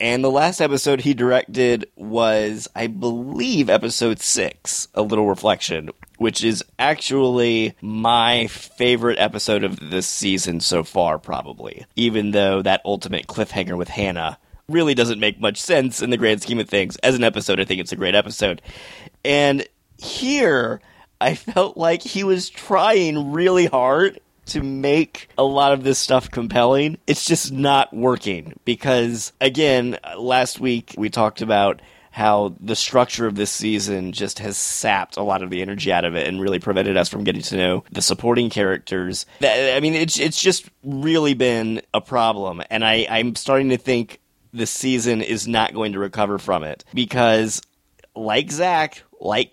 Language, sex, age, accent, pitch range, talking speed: English, male, 30-49, American, 105-140 Hz, 170 wpm